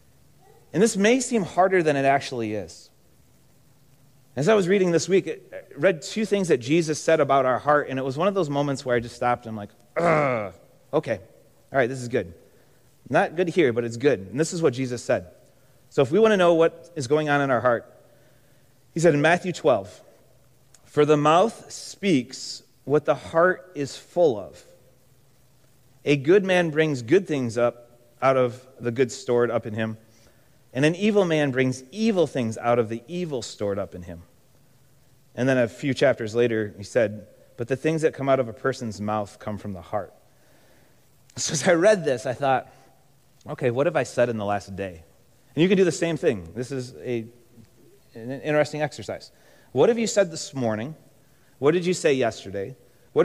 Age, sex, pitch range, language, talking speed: 30-49, male, 120-155 Hz, English, 200 wpm